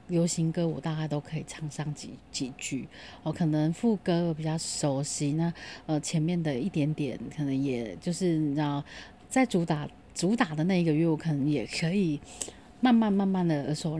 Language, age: Chinese, 30-49